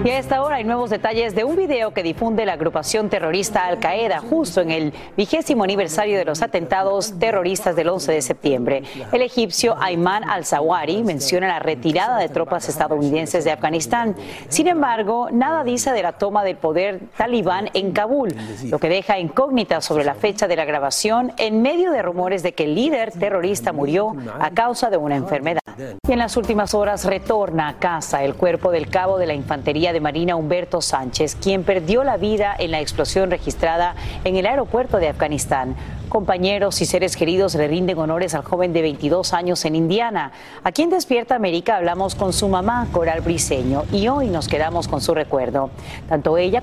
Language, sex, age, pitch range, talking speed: Spanish, female, 40-59, 155-210 Hz, 185 wpm